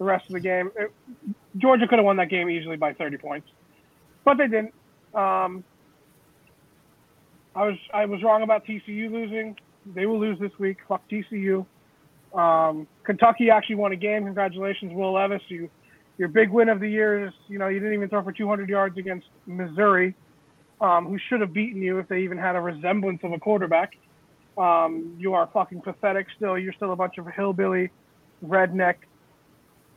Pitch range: 175-215 Hz